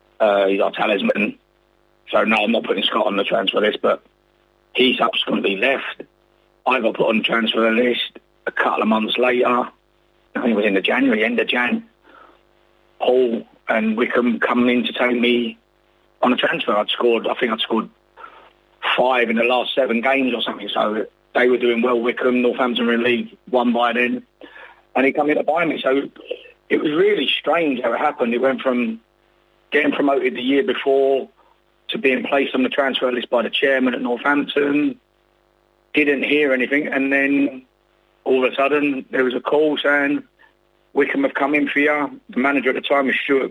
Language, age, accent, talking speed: English, 30-49, British, 190 wpm